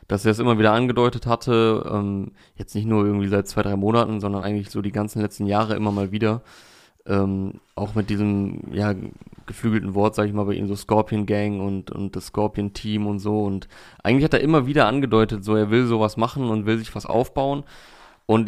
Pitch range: 105-120 Hz